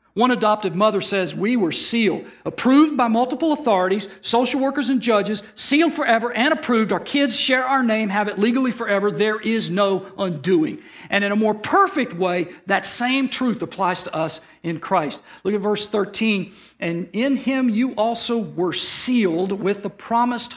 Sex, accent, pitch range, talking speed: male, American, 195-255 Hz, 175 wpm